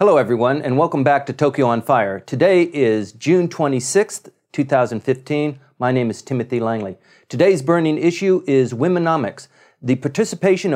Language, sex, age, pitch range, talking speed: English, male, 50-69, 120-150 Hz, 145 wpm